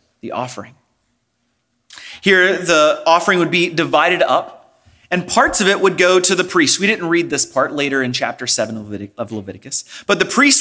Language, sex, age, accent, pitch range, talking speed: English, male, 30-49, American, 130-195 Hz, 180 wpm